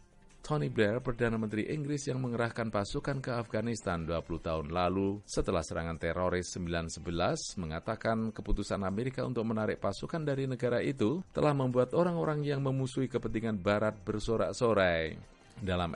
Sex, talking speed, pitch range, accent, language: male, 130 wpm, 85-115 Hz, Indonesian, English